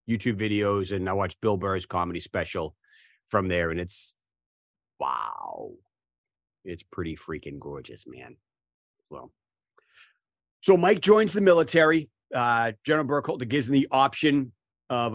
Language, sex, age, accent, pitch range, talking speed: English, male, 40-59, American, 100-125 Hz, 130 wpm